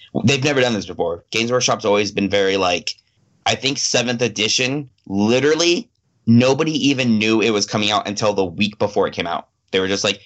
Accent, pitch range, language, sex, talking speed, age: American, 100-120 Hz, English, male, 200 wpm, 20-39